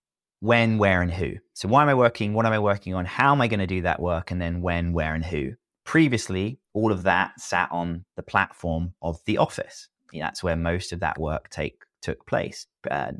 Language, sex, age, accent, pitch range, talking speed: English, male, 30-49, British, 85-105 Hz, 225 wpm